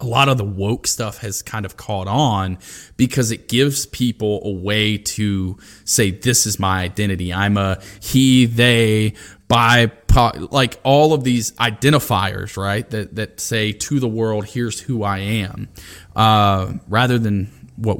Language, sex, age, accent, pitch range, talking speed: English, male, 20-39, American, 100-125 Hz, 160 wpm